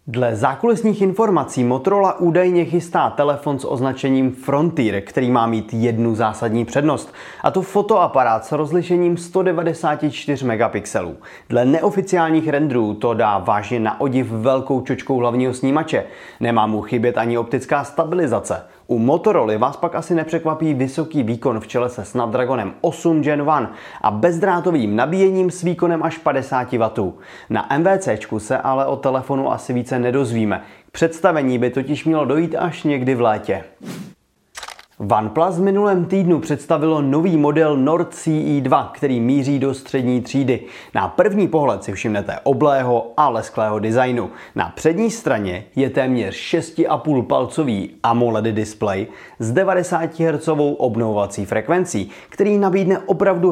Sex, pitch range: male, 120-165 Hz